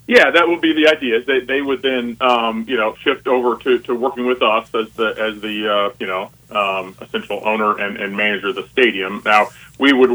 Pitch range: 105-125 Hz